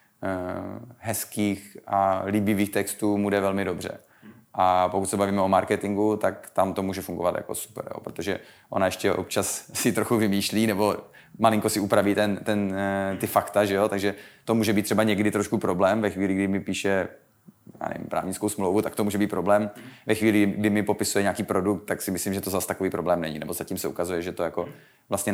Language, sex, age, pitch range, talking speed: Slovak, male, 30-49, 95-105 Hz, 195 wpm